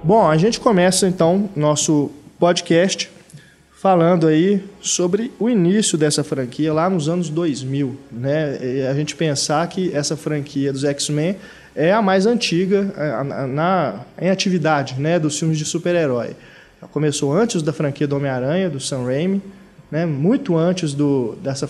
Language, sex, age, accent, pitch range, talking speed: Portuguese, male, 20-39, Brazilian, 140-175 Hz, 150 wpm